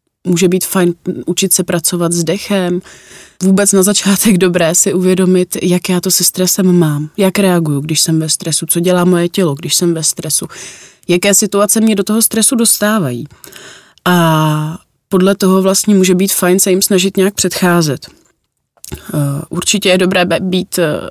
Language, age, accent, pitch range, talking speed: Czech, 20-39, native, 165-185 Hz, 160 wpm